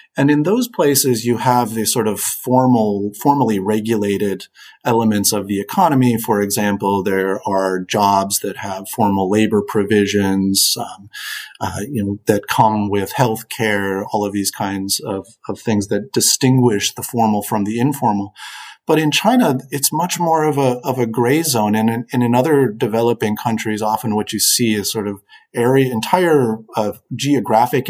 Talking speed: 170 wpm